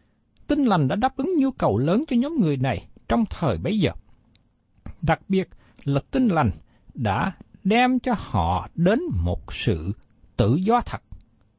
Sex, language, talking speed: male, Vietnamese, 165 wpm